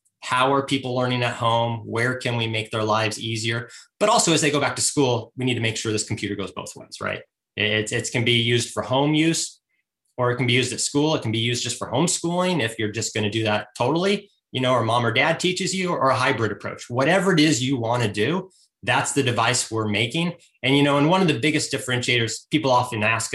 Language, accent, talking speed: English, American, 255 wpm